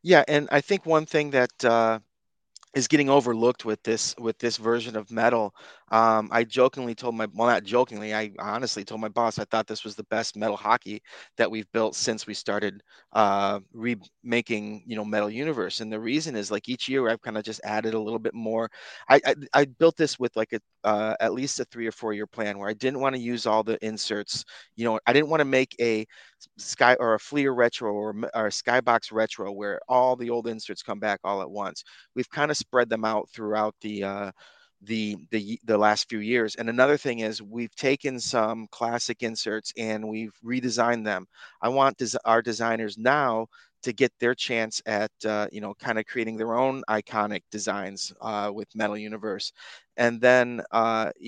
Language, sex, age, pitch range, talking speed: English, male, 30-49, 105-120 Hz, 205 wpm